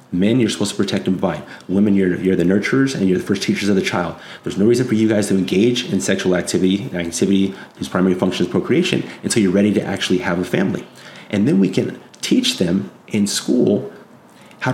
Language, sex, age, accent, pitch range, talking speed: English, male, 30-49, American, 90-100 Hz, 220 wpm